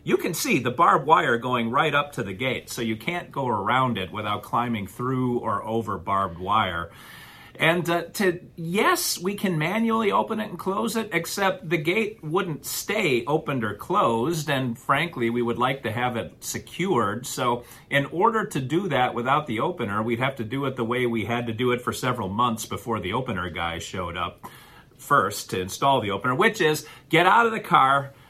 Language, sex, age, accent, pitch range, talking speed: English, male, 40-59, American, 115-155 Hz, 205 wpm